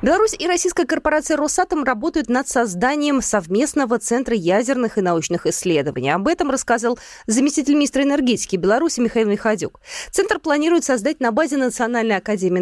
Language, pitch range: Russian, 220-305 Hz